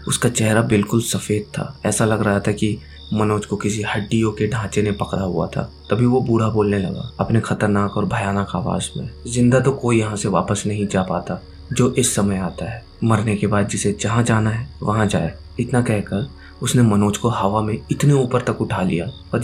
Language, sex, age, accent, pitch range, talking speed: Hindi, male, 20-39, native, 100-120 Hz, 205 wpm